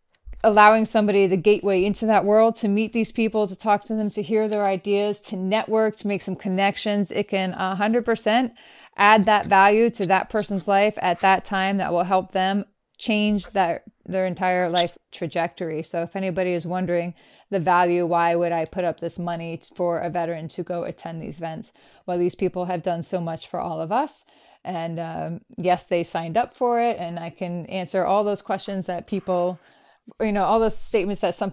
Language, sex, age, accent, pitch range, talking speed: English, female, 30-49, American, 180-210 Hz, 200 wpm